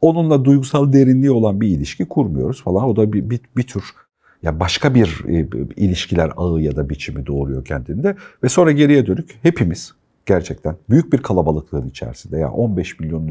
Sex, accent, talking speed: male, native, 170 wpm